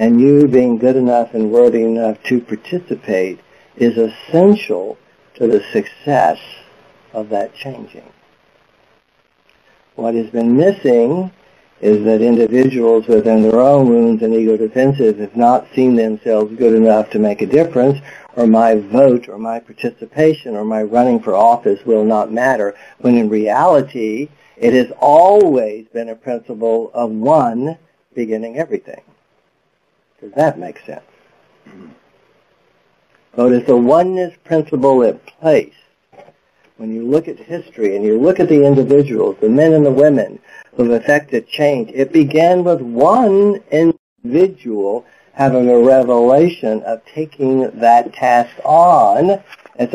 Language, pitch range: English, 110-145 Hz